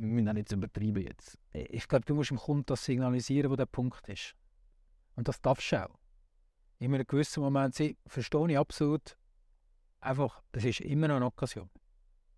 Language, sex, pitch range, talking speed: German, male, 115-155 Hz, 165 wpm